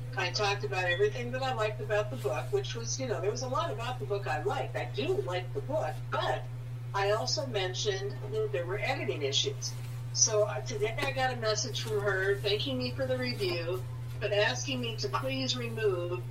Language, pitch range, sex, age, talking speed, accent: English, 120-130 Hz, female, 60-79, 205 wpm, American